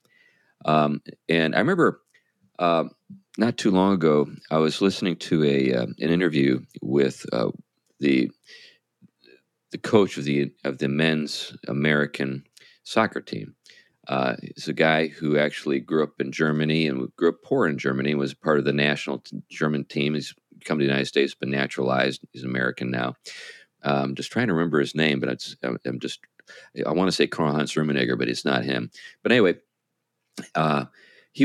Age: 40-59